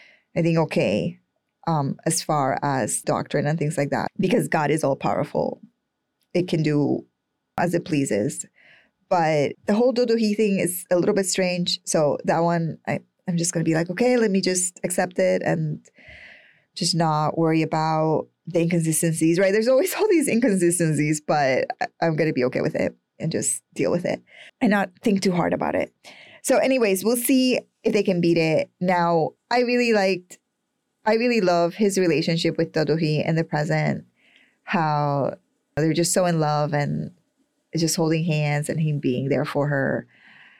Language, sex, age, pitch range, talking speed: English, female, 20-39, 155-195 Hz, 180 wpm